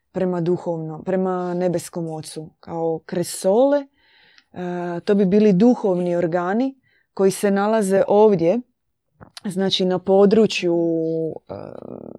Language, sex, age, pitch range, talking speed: Croatian, female, 20-39, 175-215 Hz, 105 wpm